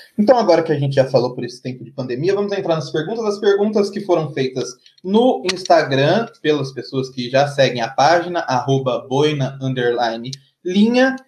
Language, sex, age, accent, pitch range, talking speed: Portuguese, male, 20-39, Brazilian, 140-200 Hz, 175 wpm